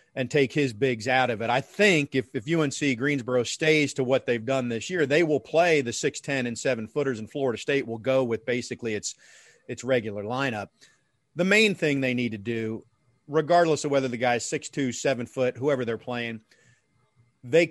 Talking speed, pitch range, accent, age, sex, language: 195 wpm, 120-150 Hz, American, 40-59, male, English